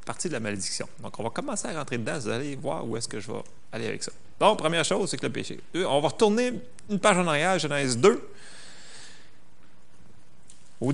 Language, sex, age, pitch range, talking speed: French, male, 30-49, 105-140 Hz, 210 wpm